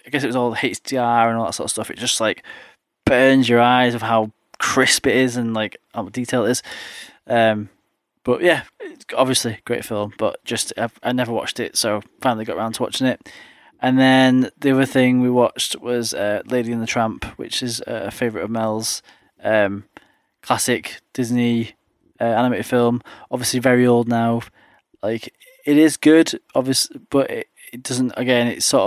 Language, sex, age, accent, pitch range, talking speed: English, male, 10-29, British, 115-130 Hz, 195 wpm